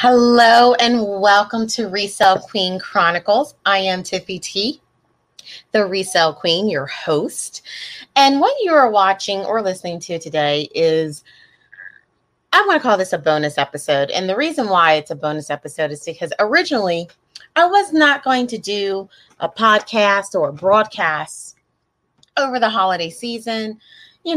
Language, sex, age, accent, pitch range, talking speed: English, female, 30-49, American, 160-220 Hz, 150 wpm